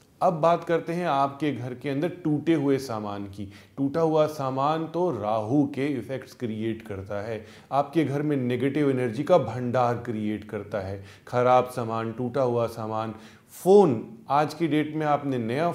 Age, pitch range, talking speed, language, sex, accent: 30-49, 120-165 Hz, 170 wpm, Hindi, male, native